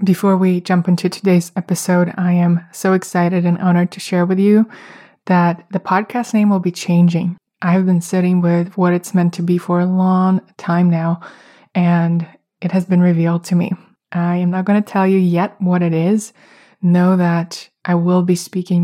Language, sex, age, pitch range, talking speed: English, female, 20-39, 175-190 Hz, 200 wpm